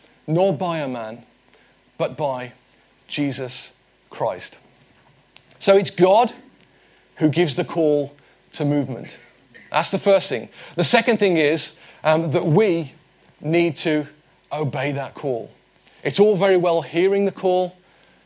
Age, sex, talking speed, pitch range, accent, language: 40-59, male, 130 wpm, 150-190 Hz, British, English